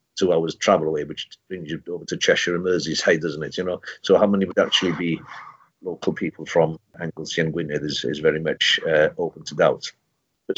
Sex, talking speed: male, 215 wpm